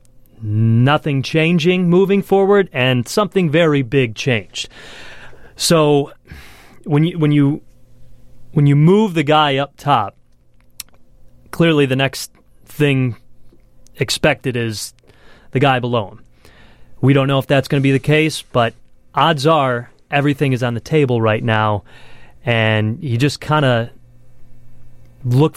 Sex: male